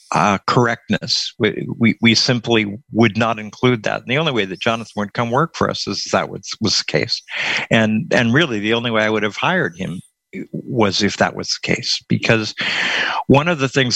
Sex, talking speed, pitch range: male, 215 wpm, 105-130 Hz